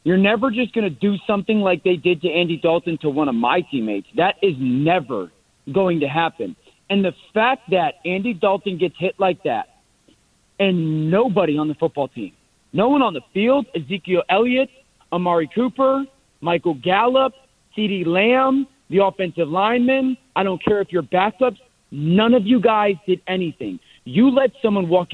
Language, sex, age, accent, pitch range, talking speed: English, male, 40-59, American, 170-215 Hz, 170 wpm